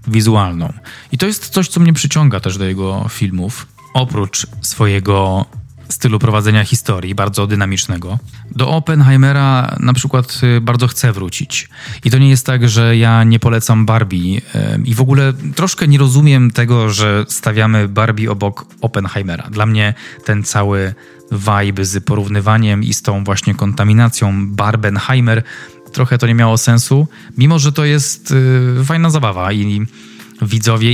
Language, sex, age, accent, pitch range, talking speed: Polish, male, 20-39, native, 105-130 Hz, 145 wpm